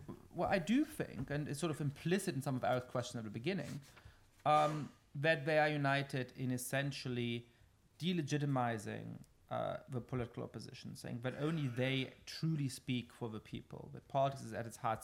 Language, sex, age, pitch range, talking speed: English, male, 30-49, 120-150 Hz, 175 wpm